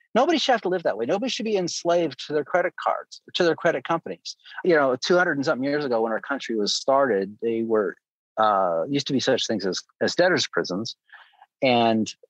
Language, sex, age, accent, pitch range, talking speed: English, male, 40-59, American, 120-175 Hz, 220 wpm